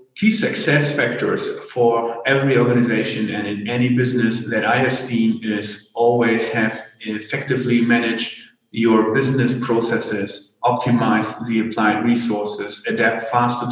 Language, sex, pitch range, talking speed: German, male, 110-125 Hz, 120 wpm